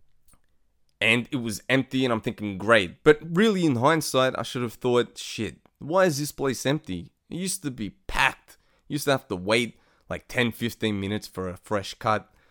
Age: 20-39